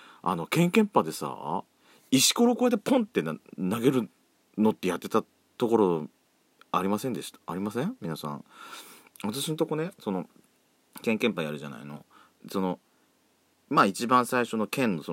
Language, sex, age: Japanese, male, 40-59